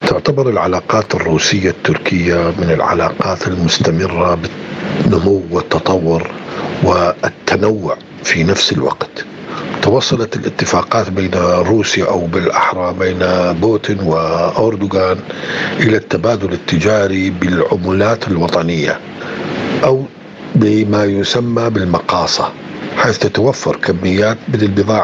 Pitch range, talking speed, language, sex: 90-105 Hz, 85 wpm, Arabic, male